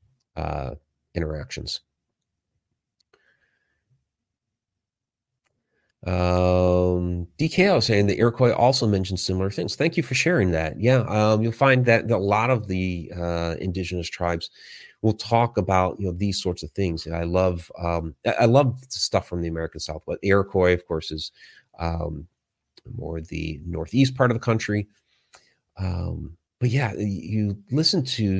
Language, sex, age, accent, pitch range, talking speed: English, male, 30-49, American, 85-115 Hz, 145 wpm